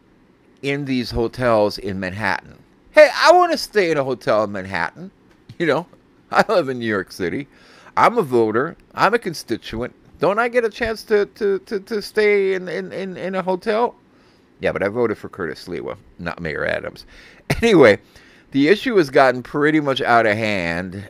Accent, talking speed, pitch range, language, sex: American, 180 wpm, 100-170 Hz, English, male